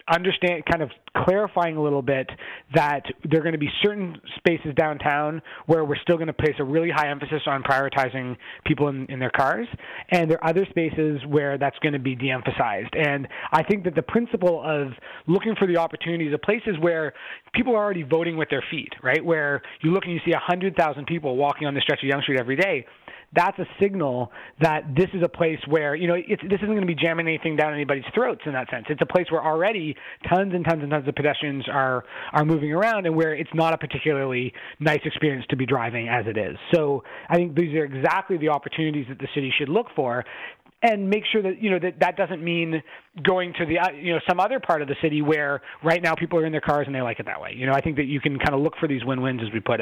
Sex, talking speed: male, 245 wpm